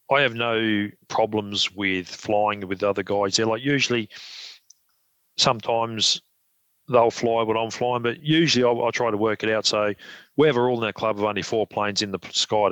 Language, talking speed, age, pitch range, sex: English, 205 wpm, 40-59, 105-120 Hz, male